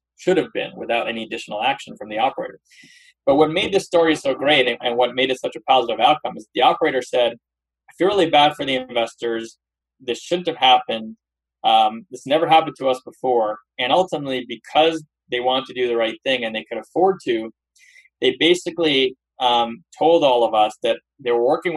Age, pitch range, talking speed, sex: 20-39, 115-160 Hz, 205 wpm, male